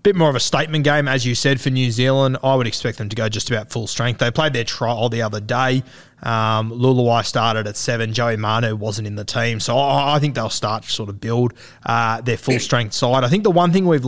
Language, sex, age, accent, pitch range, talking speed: English, male, 20-39, Australian, 115-135 Hz, 255 wpm